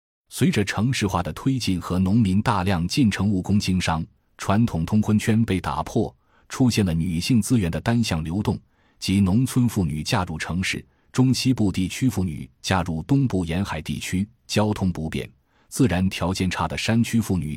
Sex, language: male, Chinese